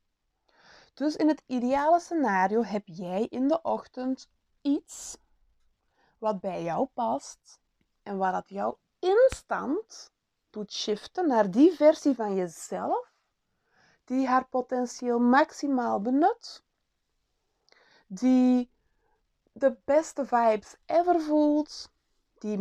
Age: 20-39